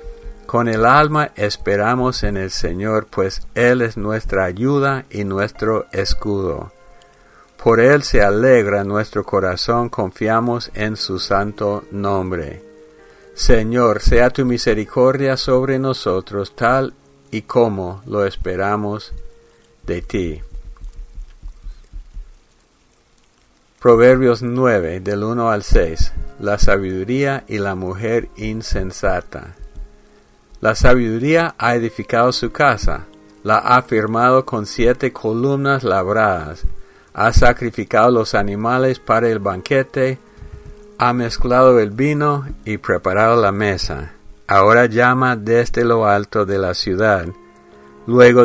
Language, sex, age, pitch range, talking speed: English, male, 50-69, 95-125 Hz, 110 wpm